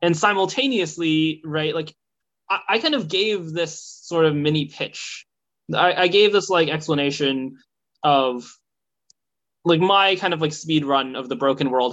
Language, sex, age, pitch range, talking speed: English, male, 20-39, 140-195 Hz, 160 wpm